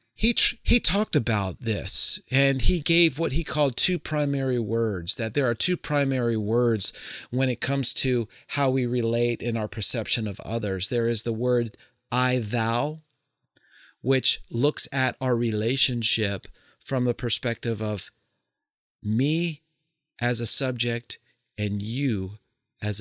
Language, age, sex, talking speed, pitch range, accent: English, 30-49, male, 145 wpm, 110-125 Hz, American